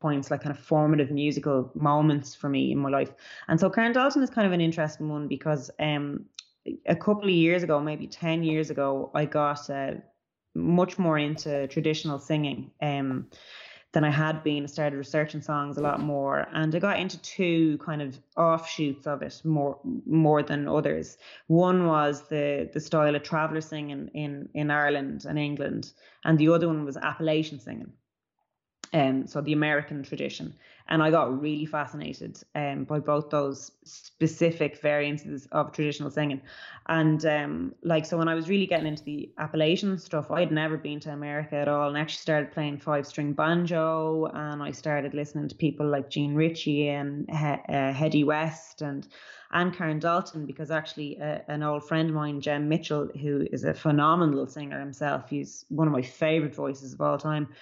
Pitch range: 145-160 Hz